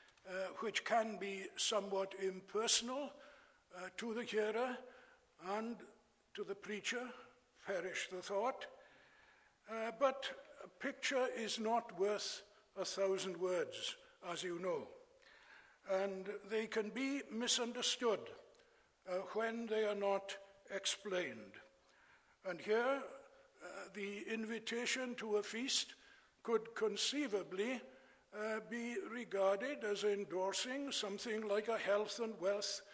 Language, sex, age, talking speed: English, male, 60-79, 115 wpm